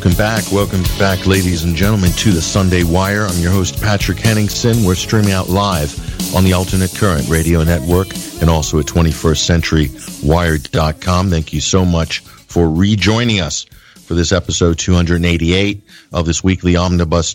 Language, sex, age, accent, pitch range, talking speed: English, male, 50-69, American, 85-100 Hz, 155 wpm